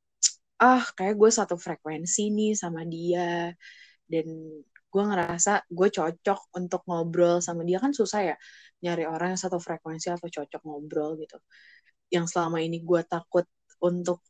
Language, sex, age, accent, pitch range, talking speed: Indonesian, female, 20-39, native, 170-205 Hz, 145 wpm